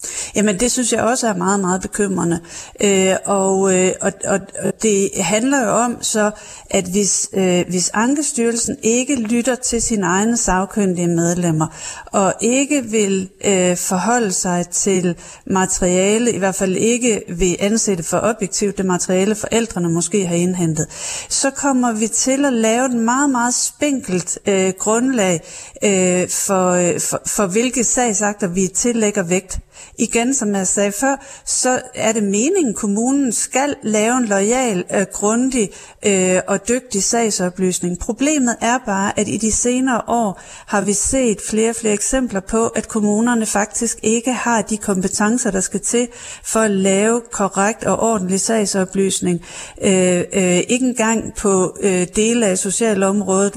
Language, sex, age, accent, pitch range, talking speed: Danish, female, 40-59, native, 190-235 Hz, 150 wpm